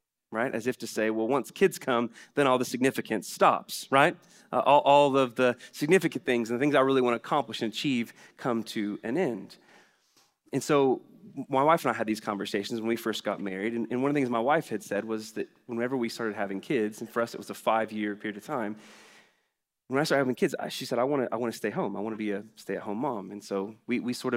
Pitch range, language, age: 110-145 Hz, English, 30-49